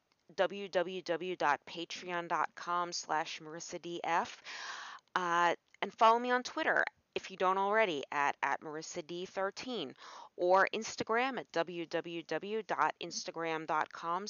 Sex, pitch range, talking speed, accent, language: female, 165-215 Hz, 90 wpm, American, English